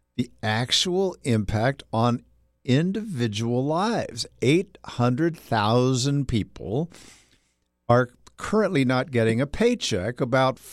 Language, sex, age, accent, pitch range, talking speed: English, male, 60-79, American, 115-150 Hz, 80 wpm